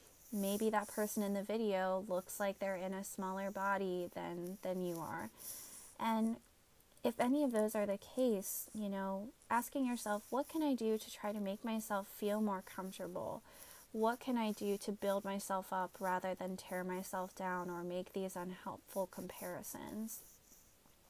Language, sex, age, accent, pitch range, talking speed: English, female, 20-39, American, 185-215 Hz, 170 wpm